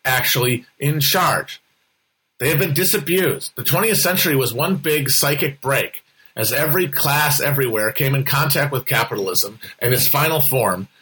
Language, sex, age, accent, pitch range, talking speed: English, male, 40-59, American, 135-170 Hz, 150 wpm